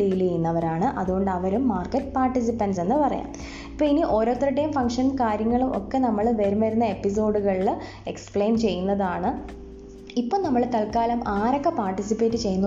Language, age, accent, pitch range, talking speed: Malayalam, 20-39, native, 190-235 Hz, 125 wpm